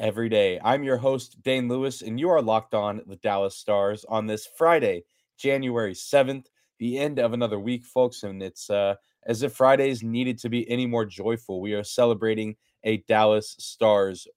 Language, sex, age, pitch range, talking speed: English, male, 20-39, 105-125 Hz, 185 wpm